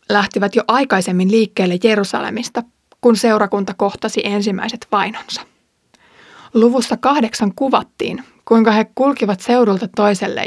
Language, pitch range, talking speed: Finnish, 200-235 Hz, 105 wpm